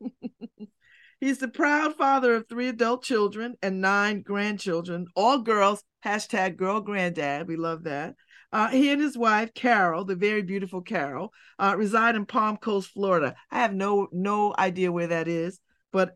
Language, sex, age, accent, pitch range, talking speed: English, female, 50-69, American, 175-235 Hz, 165 wpm